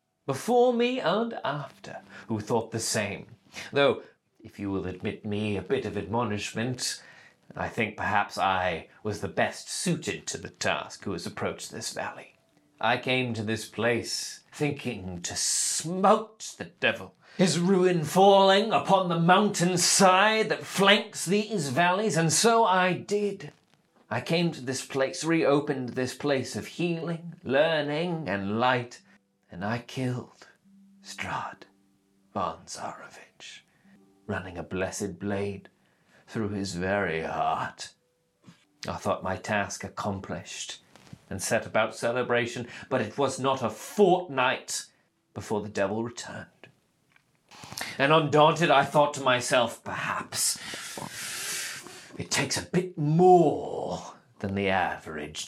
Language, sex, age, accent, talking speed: English, male, 30-49, British, 130 wpm